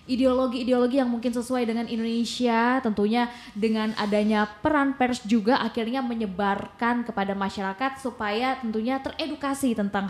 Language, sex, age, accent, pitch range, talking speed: Indonesian, female, 20-39, native, 205-255 Hz, 120 wpm